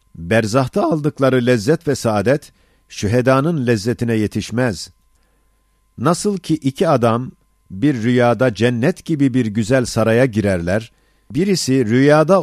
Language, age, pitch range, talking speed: Turkish, 50-69, 110-140 Hz, 105 wpm